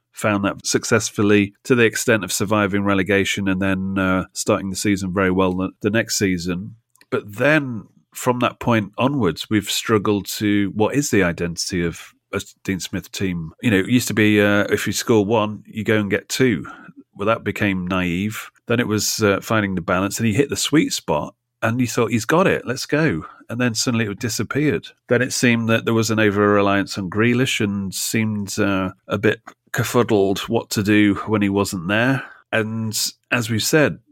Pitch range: 95-115 Hz